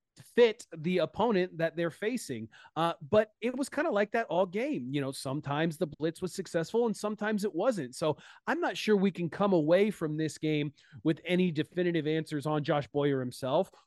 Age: 30-49